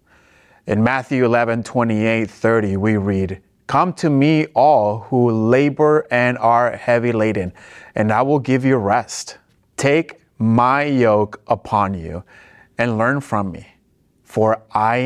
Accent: American